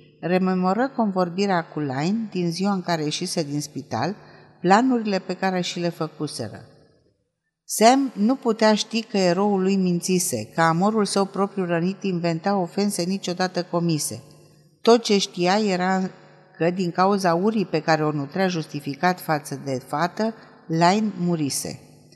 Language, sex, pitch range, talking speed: Romanian, female, 160-210 Hz, 140 wpm